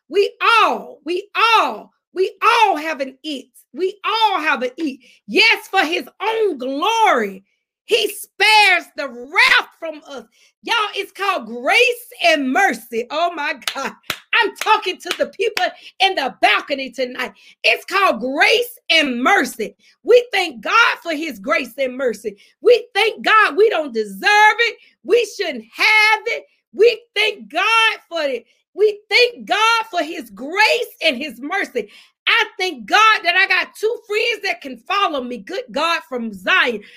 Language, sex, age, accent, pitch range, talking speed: English, female, 40-59, American, 290-430 Hz, 155 wpm